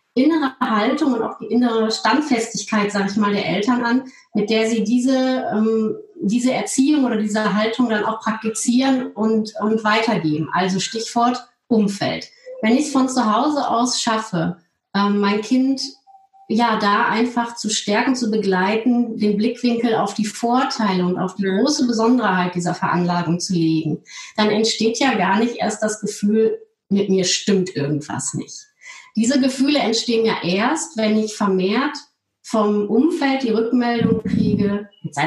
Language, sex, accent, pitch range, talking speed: German, female, German, 205-245 Hz, 150 wpm